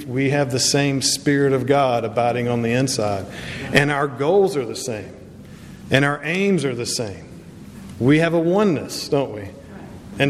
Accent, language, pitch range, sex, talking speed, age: American, English, 130-175 Hz, male, 175 wpm, 50-69